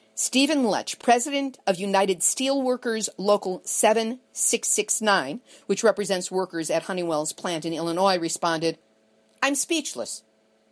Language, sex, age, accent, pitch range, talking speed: English, female, 50-69, American, 165-230 Hz, 105 wpm